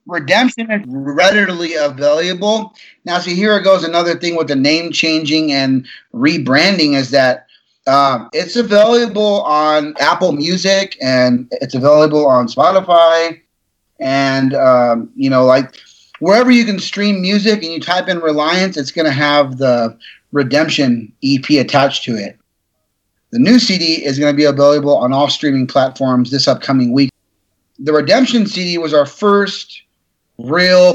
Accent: American